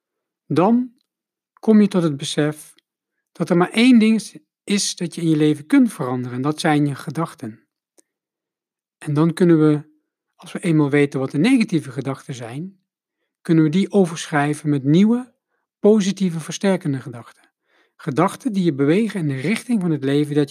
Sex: male